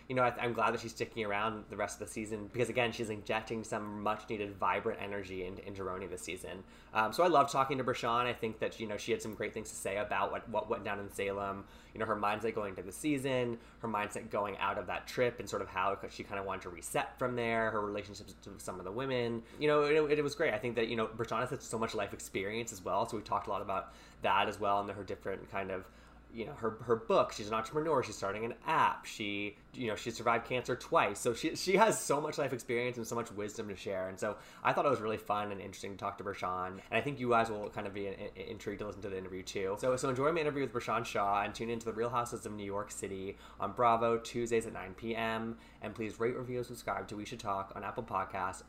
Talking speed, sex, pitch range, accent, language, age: 275 wpm, male, 100-120 Hz, American, English, 20-39